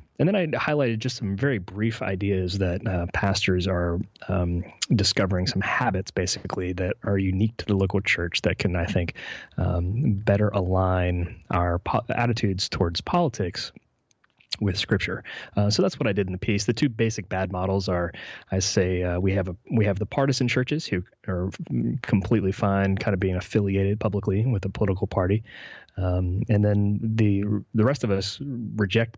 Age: 20-39